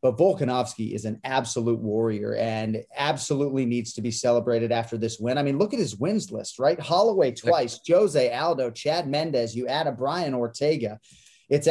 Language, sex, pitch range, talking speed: English, male, 115-150 Hz, 180 wpm